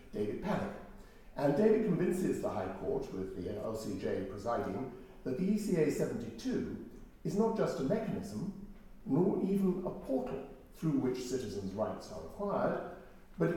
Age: 60-79